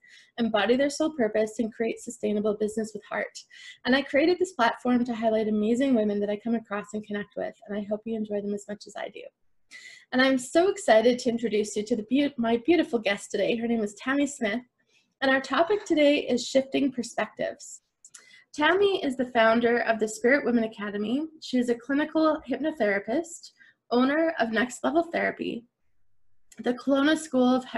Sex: female